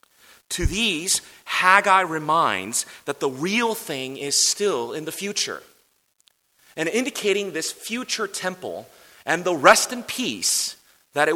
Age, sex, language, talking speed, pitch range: 30-49, male, English, 130 wpm, 110-160 Hz